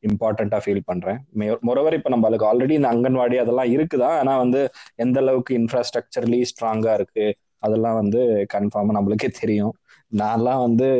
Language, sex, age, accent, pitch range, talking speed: Tamil, male, 20-39, native, 105-125 Hz, 140 wpm